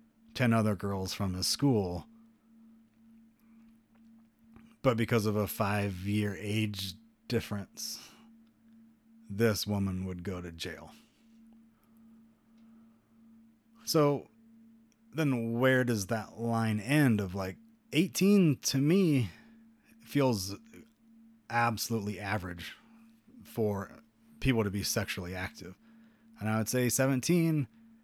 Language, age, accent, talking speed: English, 30-49, American, 95 wpm